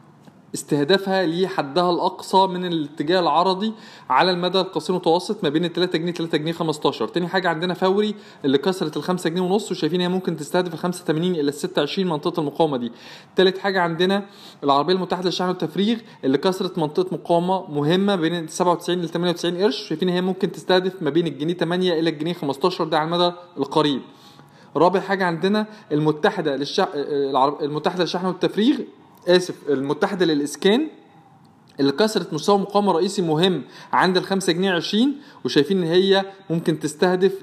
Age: 20-39